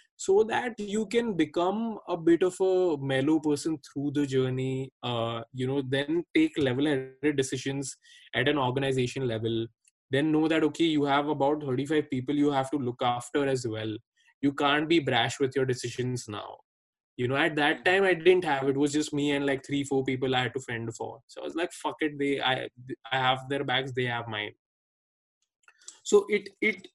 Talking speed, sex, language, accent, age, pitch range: 200 wpm, male, English, Indian, 20-39, 135-190 Hz